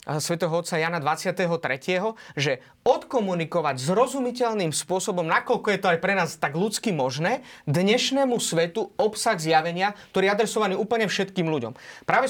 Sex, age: male, 30-49